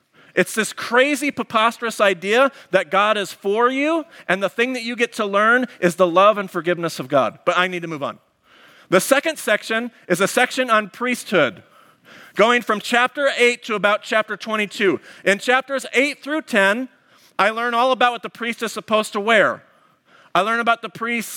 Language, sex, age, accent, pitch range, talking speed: English, male, 40-59, American, 195-245 Hz, 190 wpm